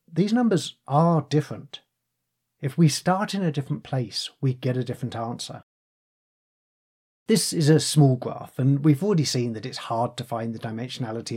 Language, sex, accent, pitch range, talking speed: English, male, British, 120-155 Hz, 170 wpm